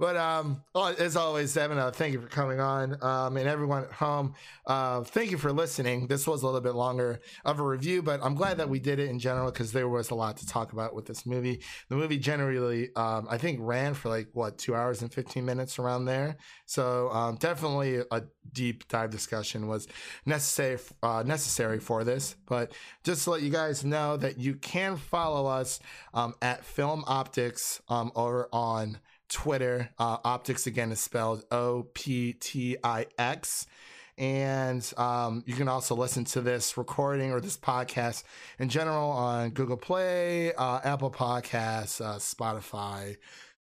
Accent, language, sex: American, English, male